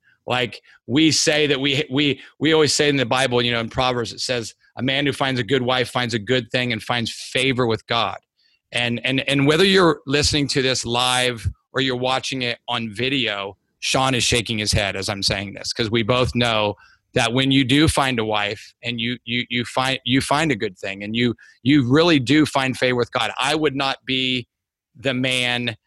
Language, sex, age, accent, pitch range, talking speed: English, male, 30-49, American, 115-135 Hz, 220 wpm